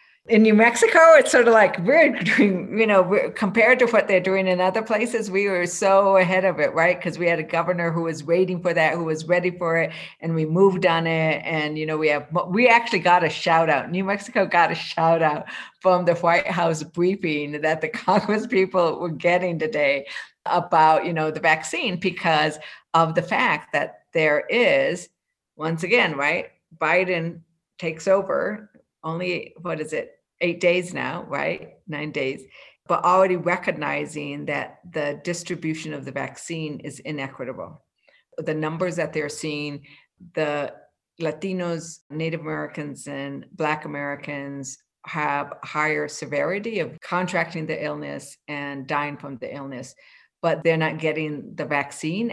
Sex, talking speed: female, 165 wpm